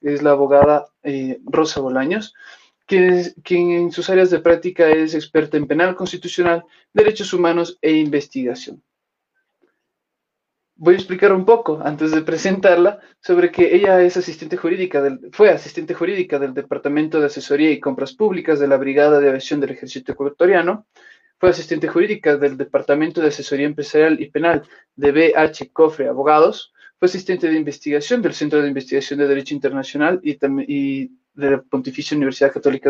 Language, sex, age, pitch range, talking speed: Spanish, male, 20-39, 145-185 Hz, 160 wpm